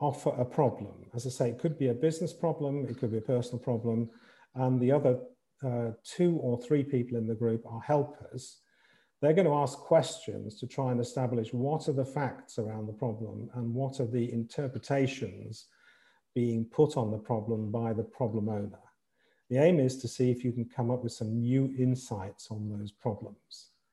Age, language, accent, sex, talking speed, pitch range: 50-69, English, British, male, 195 wpm, 120-145 Hz